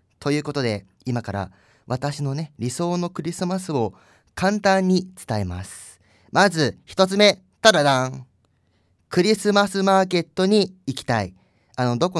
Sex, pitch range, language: male, 95-150 Hz, Japanese